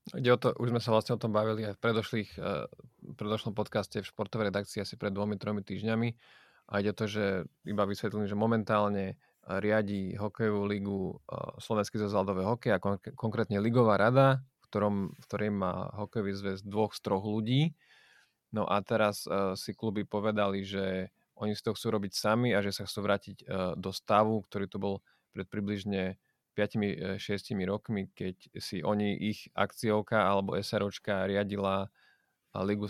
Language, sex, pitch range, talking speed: Slovak, male, 100-110 Hz, 155 wpm